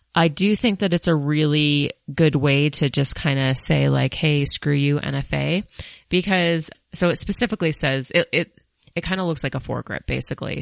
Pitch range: 130-160 Hz